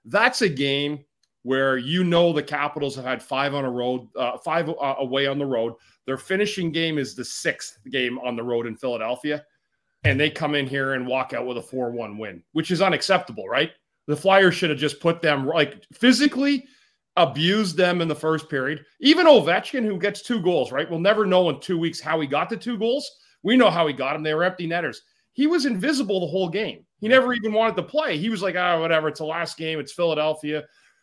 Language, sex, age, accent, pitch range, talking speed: English, male, 30-49, American, 135-180 Hz, 225 wpm